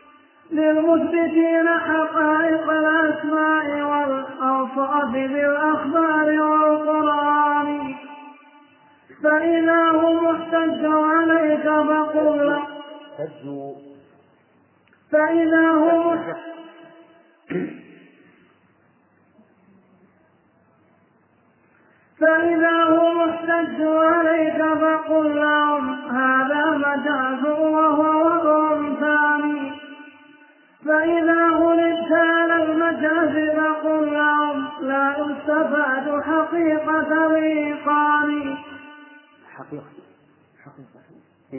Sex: male